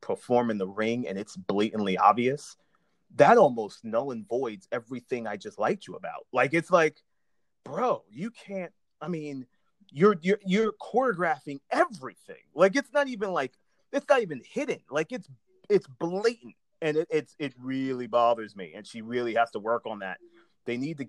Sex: male